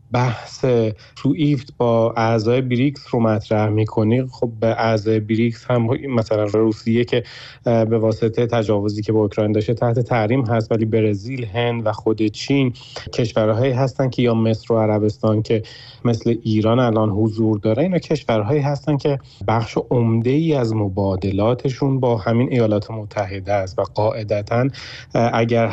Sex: male